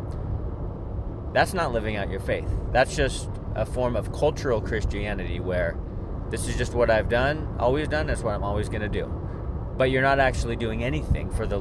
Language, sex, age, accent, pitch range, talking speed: English, male, 30-49, American, 95-115 Hz, 190 wpm